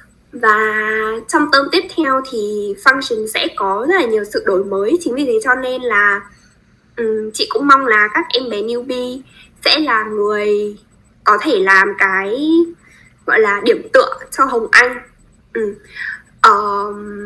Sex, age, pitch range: female, 10-29, 215-355 Hz